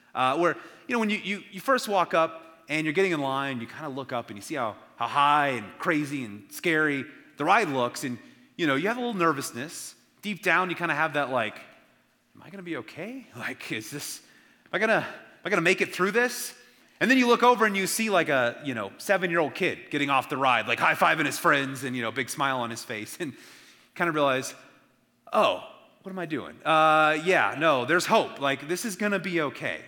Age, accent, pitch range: 30-49, American, 130-195 Hz